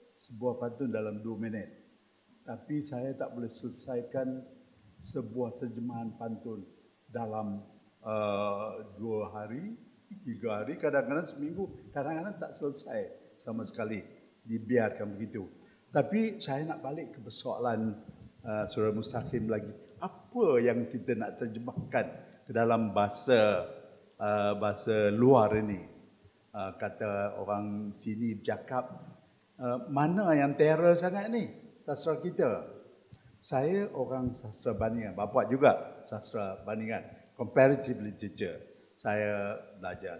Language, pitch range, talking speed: English, 110-165 Hz, 110 wpm